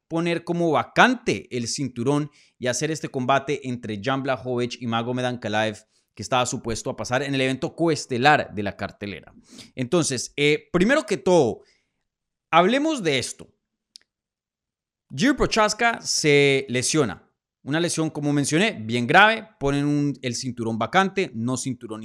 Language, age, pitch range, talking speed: Spanish, 30-49, 125-165 Hz, 140 wpm